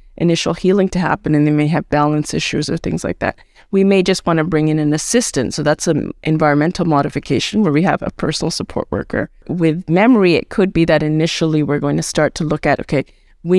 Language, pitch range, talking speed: English, 150-175 Hz, 225 wpm